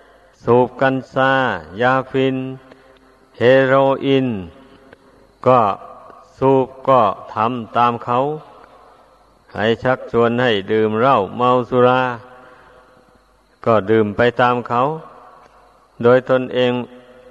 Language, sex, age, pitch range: Thai, male, 60-79, 115-130 Hz